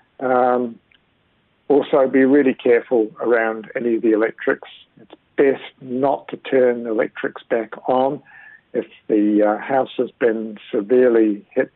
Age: 60-79